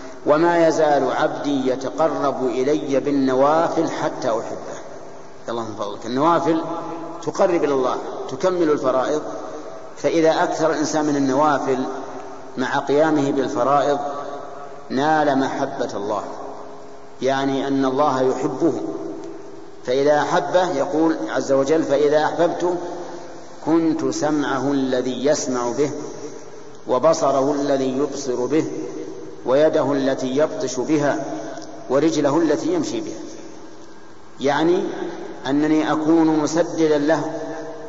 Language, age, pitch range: Arabic, 50-69, 140-160 Hz